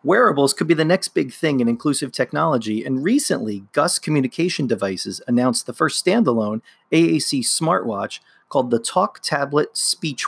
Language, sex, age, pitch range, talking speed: English, male, 40-59, 125-170 Hz, 150 wpm